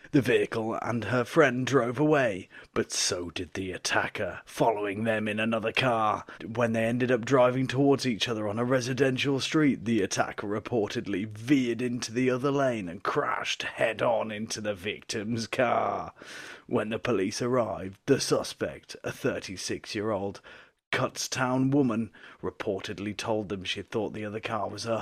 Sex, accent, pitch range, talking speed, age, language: male, British, 105-125 Hz, 155 wpm, 30-49, English